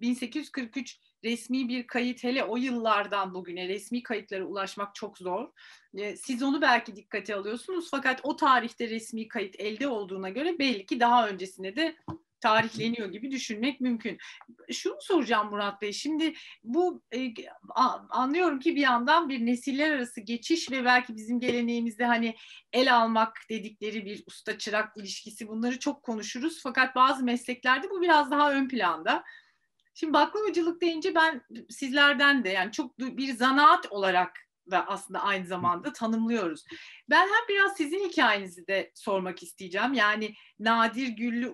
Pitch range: 215-270 Hz